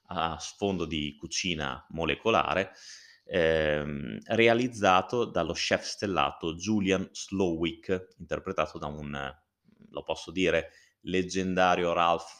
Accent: native